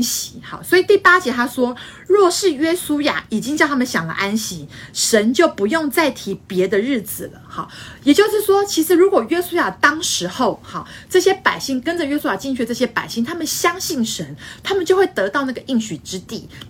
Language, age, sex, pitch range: Chinese, 30-49, female, 200-330 Hz